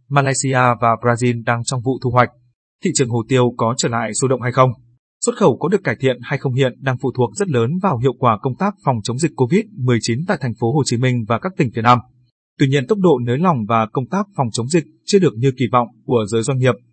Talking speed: 260 wpm